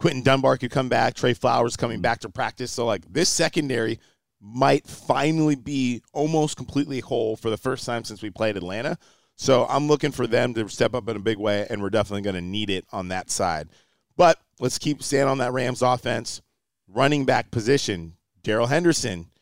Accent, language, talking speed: American, English, 200 wpm